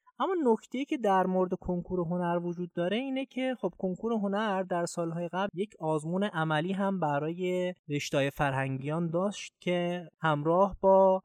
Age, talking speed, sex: 20-39, 150 wpm, male